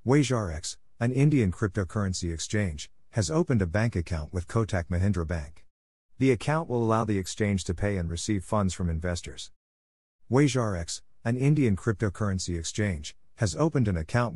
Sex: male